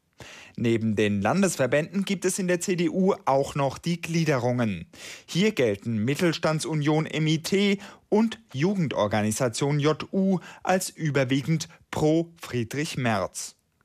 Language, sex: German, male